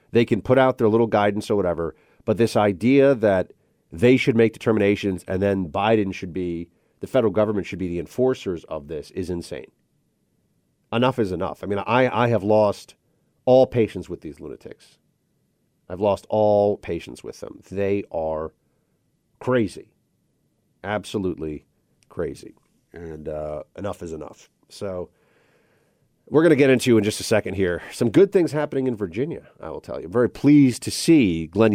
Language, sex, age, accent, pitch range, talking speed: English, male, 40-59, American, 95-125 Hz, 170 wpm